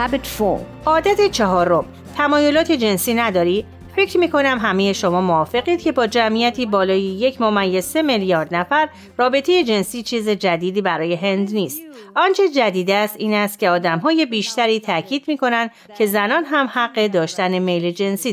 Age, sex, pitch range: 30-49, female, 180-255 Hz